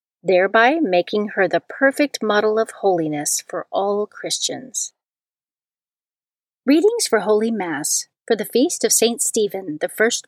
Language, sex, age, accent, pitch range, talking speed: English, female, 40-59, American, 200-270 Hz, 135 wpm